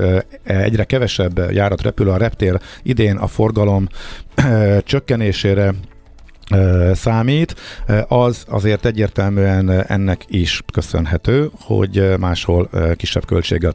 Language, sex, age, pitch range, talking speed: Hungarian, male, 50-69, 90-110 Hz, 90 wpm